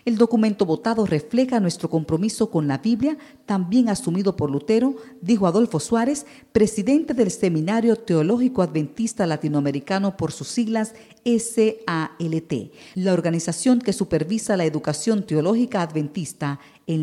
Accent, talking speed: American, 125 wpm